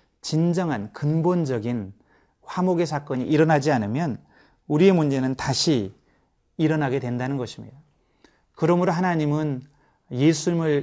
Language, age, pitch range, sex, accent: Korean, 30-49, 125-165 Hz, male, native